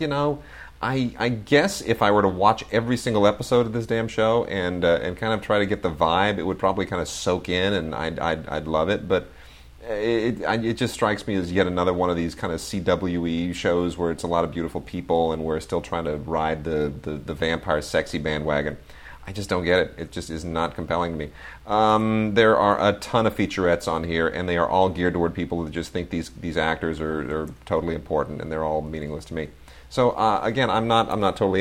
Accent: American